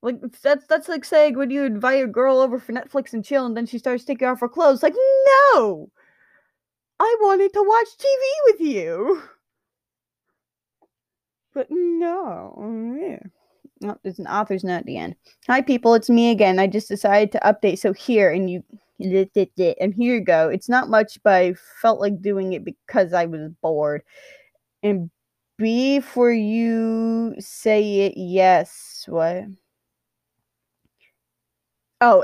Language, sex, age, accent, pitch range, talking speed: English, female, 20-39, American, 195-265 Hz, 155 wpm